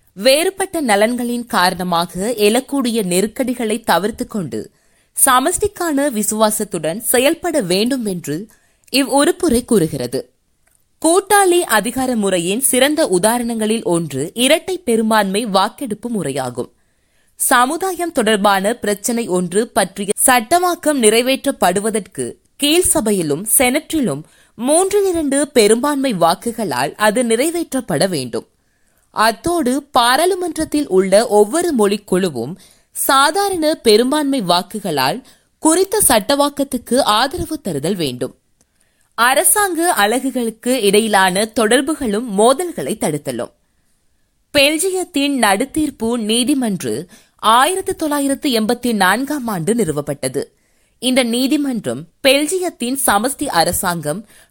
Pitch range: 205-290 Hz